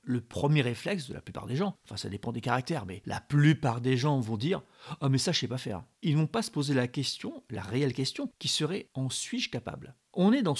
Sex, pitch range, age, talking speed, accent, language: male, 120-165 Hz, 40-59, 285 wpm, French, French